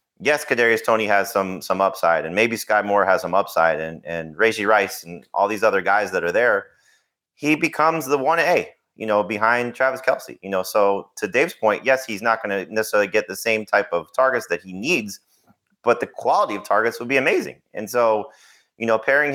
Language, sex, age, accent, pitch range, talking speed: English, male, 30-49, American, 95-125 Hz, 215 wpm